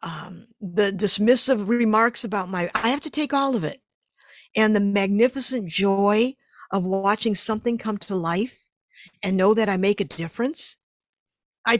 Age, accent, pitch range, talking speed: 50-69, American, 210-275 Hz, 160 wpm